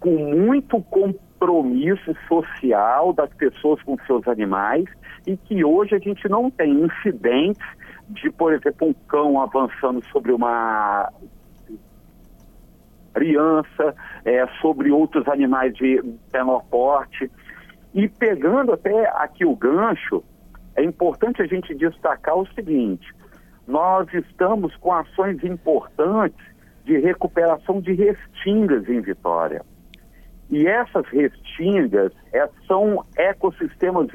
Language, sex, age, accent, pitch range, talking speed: Portuguese, male, 60-79, Brazilian, 150-210 Hz, 105 wpm